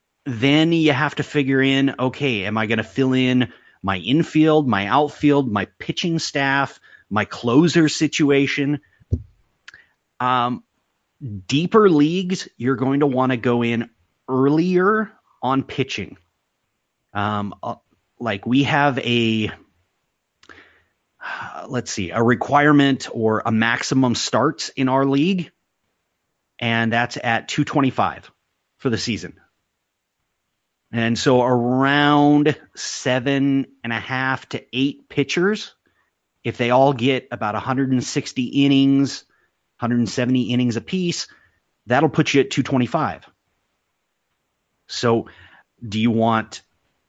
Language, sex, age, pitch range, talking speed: English, male, 30-49, 115-145 Hz, 115 wpm